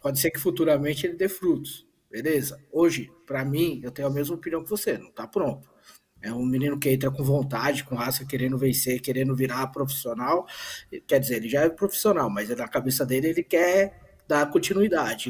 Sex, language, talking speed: male, Portuguese, 190 wpm